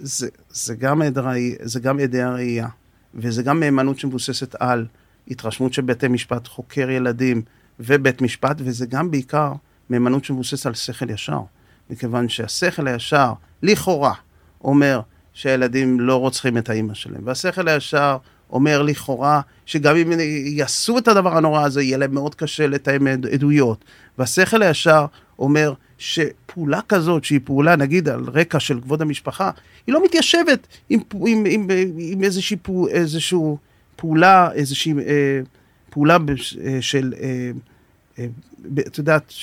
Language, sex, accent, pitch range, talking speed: Hebrew, male, native, 125-165 Hz, 135 wpm